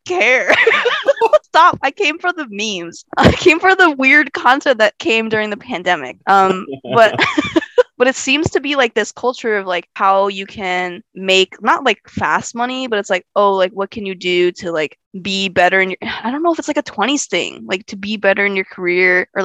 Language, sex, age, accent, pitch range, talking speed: English, female, 20-39, American, 185-235 Hz, 215 wpm